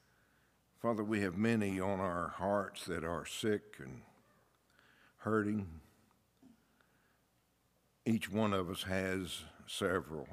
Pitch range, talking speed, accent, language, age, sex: 80-95 Hz, 105 wpm, American, English, 60-79, male